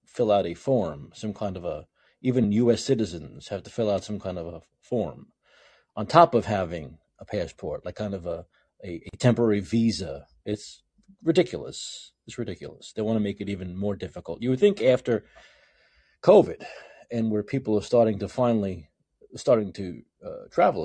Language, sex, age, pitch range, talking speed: English, male, 40-59, 95-120 Hz, 180 wpm